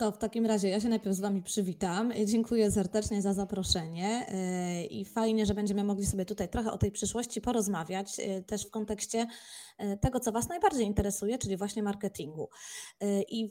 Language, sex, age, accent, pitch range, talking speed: Polish, female, 20-39, native, 200-230 Hz, 165 wpm